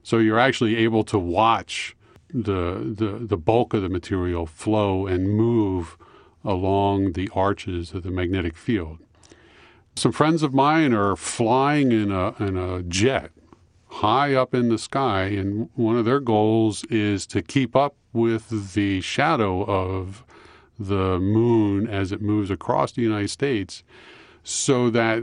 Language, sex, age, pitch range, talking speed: English, male, 50-69, 95-115 Hz, 150 wpm